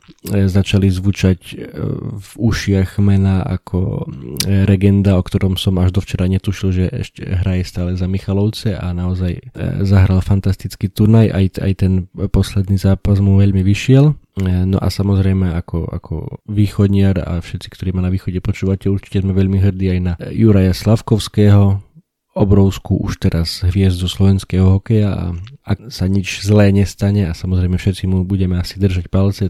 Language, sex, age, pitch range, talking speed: Slovak, male, 20-39, 95-105 Hz, 150 wpm